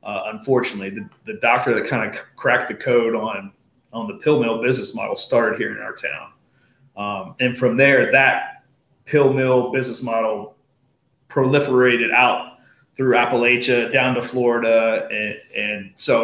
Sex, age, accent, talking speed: male, 30-49, American, 155 wpm